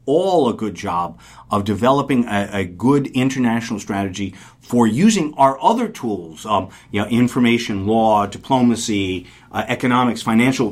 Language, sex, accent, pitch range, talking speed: English, male, American, 100-120 Hz, 140 wpm